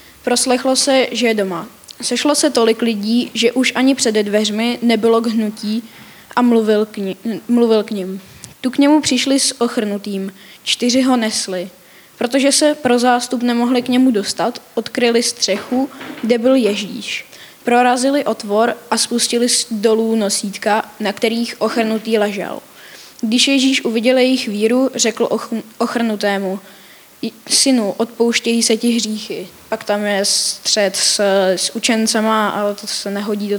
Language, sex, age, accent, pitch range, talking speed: Czech, female, 10-29, native, 215-250 Hz, 145 wpm